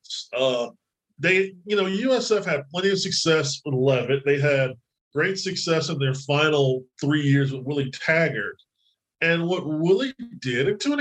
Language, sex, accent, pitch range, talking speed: English, male, American, 135-175 Hz, 165 wpm